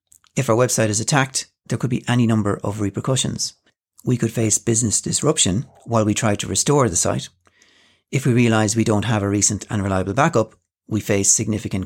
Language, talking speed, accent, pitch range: English, 190 wpm, Irish, 105-130 Hz